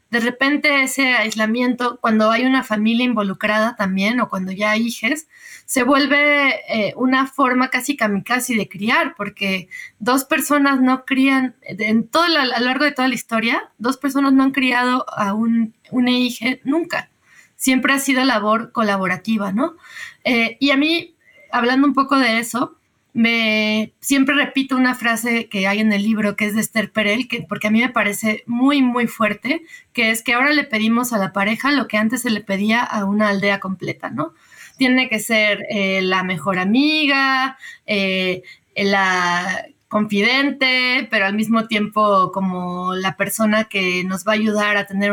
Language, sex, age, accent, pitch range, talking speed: Spanish, female, 20-39, Mexican, 205-265 Hz, 175 wpm